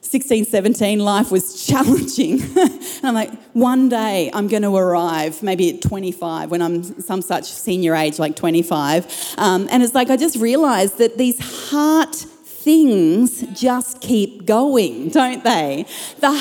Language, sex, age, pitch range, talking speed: English, female, 40-59, 210-290 Hz, 150 wpm